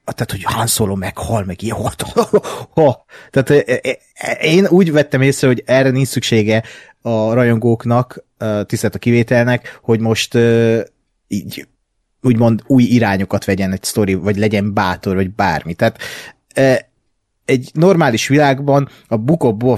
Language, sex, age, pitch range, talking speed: Hungarian, male, 30-49, 110-140 Hz, 160 wpm